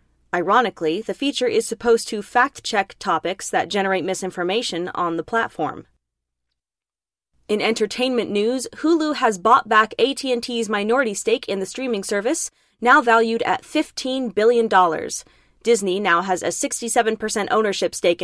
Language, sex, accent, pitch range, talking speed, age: English, female, American, 190-240 Hz, 130 wpm, 20-39